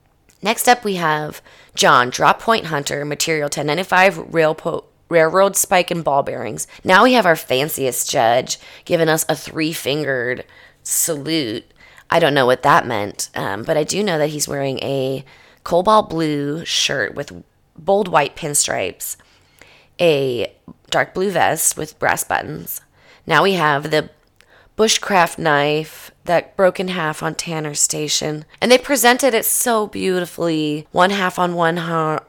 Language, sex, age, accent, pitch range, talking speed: English, female, 20-39, American, 145-180 Hz, 145 wpm